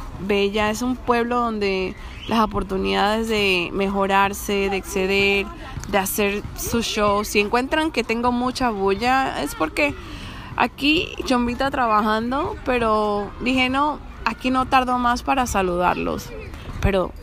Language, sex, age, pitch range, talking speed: English, female, 20-39, 195-240 Hz, 125 wpm